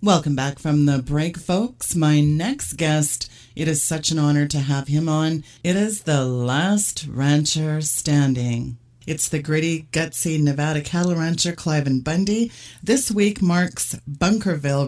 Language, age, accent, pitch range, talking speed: English, 40-59, American, 145-175 Hz, 155 wpm